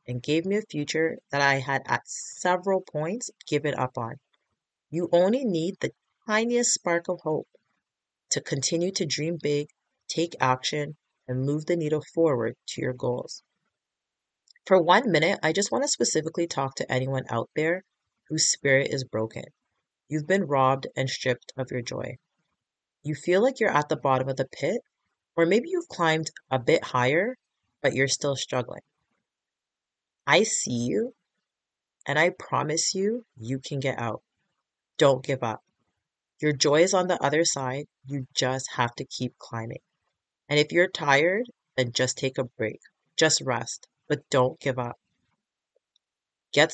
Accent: American